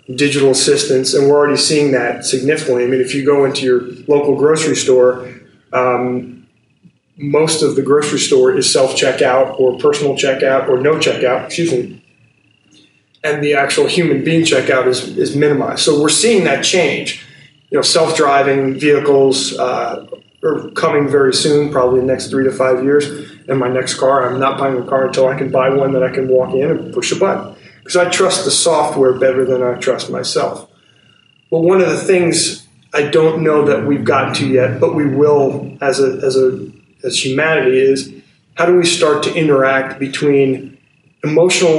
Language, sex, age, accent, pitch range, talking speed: English, male, 30-49, American, 130-155 Hz, 185 wpm